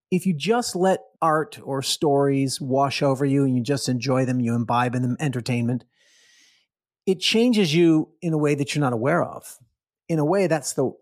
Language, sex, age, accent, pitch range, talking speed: English, male, 40-59, American, 125-170 Hz, 195 wpm